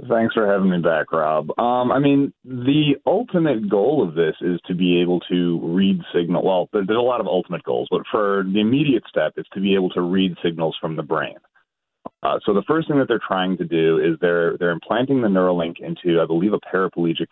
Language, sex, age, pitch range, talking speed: English, male, 30-49, 85-120 Hz, 220 wpm